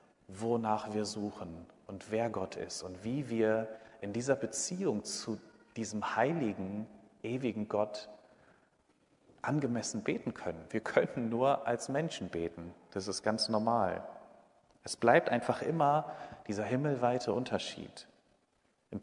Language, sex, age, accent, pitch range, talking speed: German, male, 40-59, German, 100-125 Hz, 125 wpm